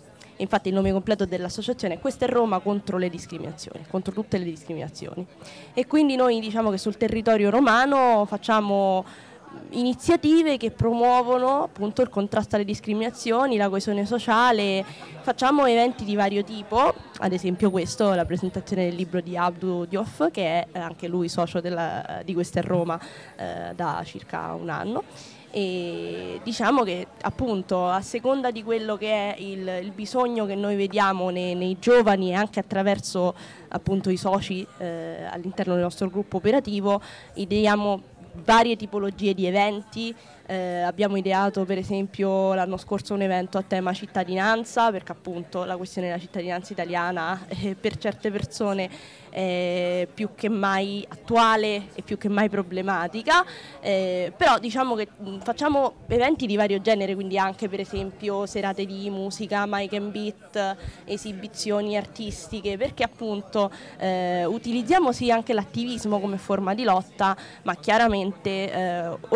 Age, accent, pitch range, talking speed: 20-39, native, 185-220 Hz, 150 wpm